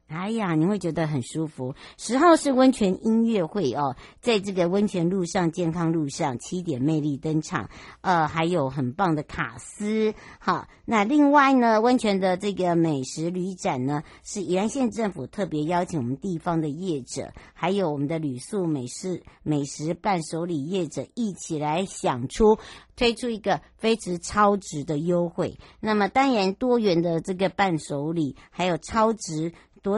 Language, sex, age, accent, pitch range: Chinese, male, 60-79, American, 160-205 Hz